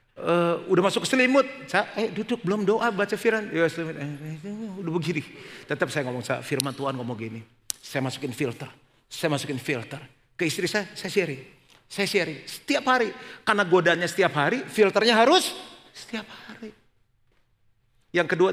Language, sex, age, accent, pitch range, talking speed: Indonesian, male, 50-69, native, 120-170 Hz, 155 wpm